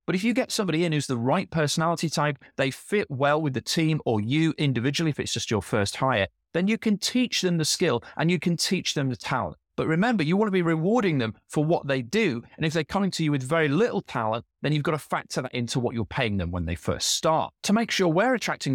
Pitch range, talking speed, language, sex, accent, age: 115-170 Hz, 260 wpm, English, male, British, 30-49